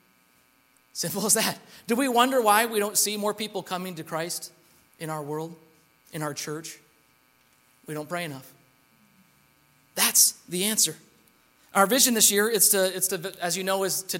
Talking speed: 175 wpm